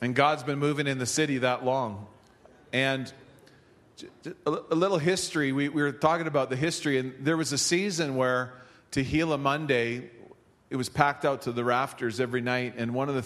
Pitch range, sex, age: 115-135 Hz, male, 40-59